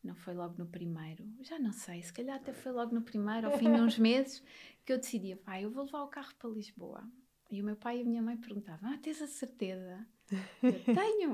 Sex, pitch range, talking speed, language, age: female, 200-260 Hz, 240 wpm, Portuguese, 20-39